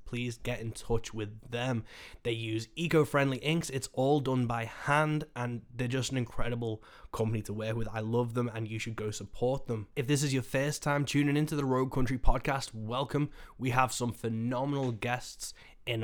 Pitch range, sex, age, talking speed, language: 115-130 Hz, male, 10-29, 195 wpm, English